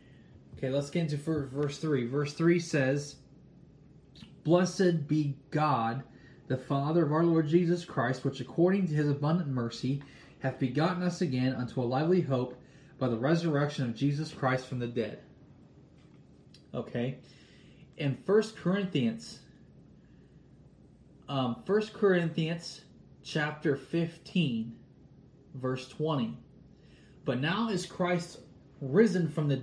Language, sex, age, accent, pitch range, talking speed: English, male, 20-39, American, 135-175 Hz, 120 wpm